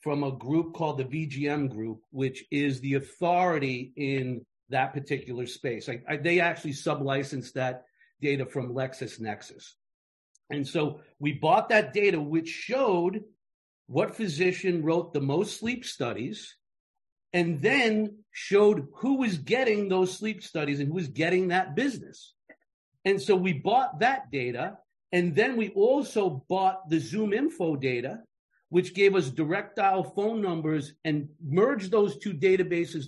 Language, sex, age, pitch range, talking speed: English, male, 50-69, 145-195 Hz, 145 wpm